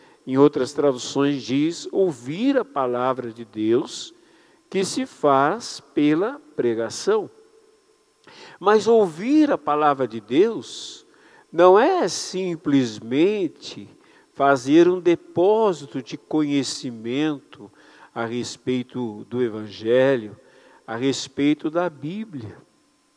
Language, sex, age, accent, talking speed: Portuguese, male, 60-79, Brazilian, 95 wpm